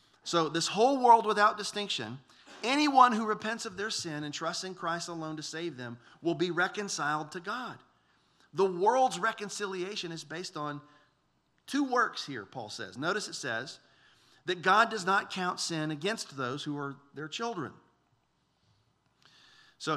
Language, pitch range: English, 155-205 Hz